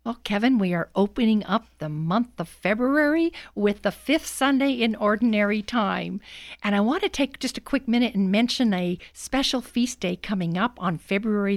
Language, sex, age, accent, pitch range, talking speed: English, female, 50-69, American, 185-245 Hz, 185 wpm